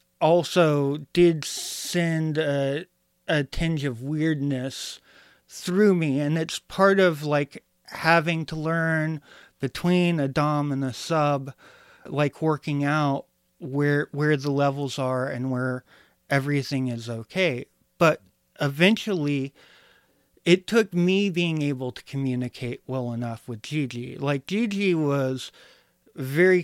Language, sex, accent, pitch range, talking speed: English, male, American, 130-165 Hz, 120 wpm